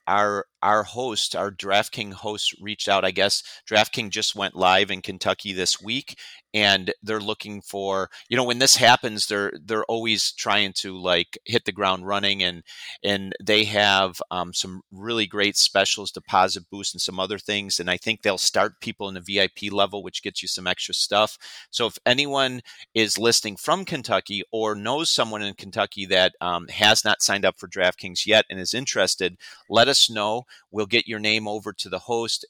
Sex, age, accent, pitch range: male, 30-49, American, 95-105 Hz